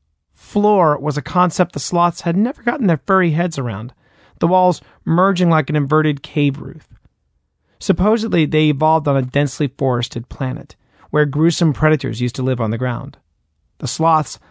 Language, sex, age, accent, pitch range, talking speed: English, male, 40-59, American, 115-165 Hz, 165 wpm